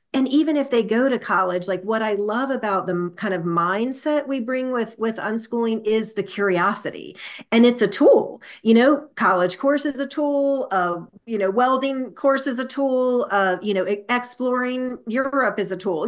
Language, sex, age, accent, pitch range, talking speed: English, female, 40-59, American, 190-245 Hz, 200 wpm